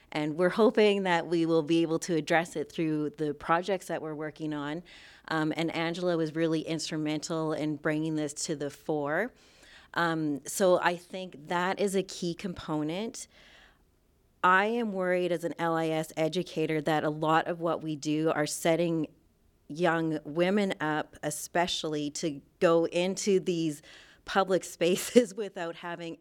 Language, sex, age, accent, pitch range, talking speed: English, female, 30-49, American, 155-180 Hz, 155 wpm